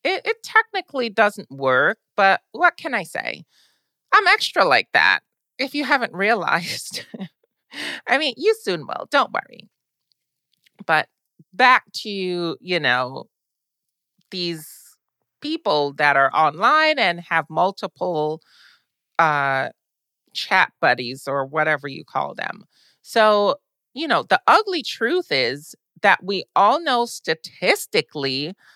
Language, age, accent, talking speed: English, 30-49, American, 120 wpm